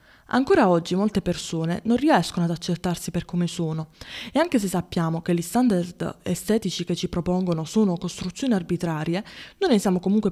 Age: 20-39